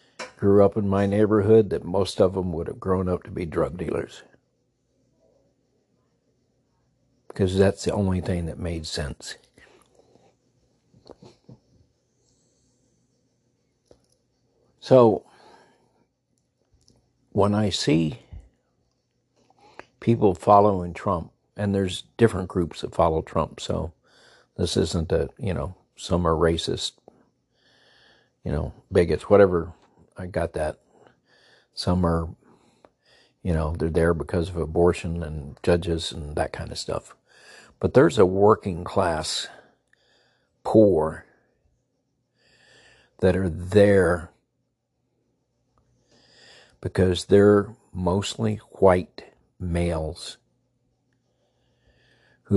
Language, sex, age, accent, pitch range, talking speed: English, male, 60-79, American, 85-110 Hz, 100 wpm